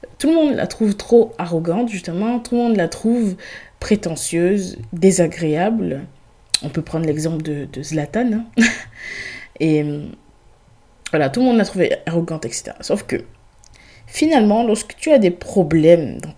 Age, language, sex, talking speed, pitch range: 20-39, French, female, 150 wpm, 160-230 Hz